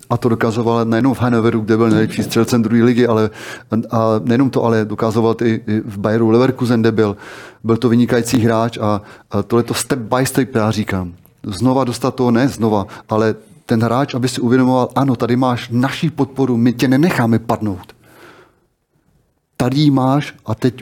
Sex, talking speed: male, 180 wpm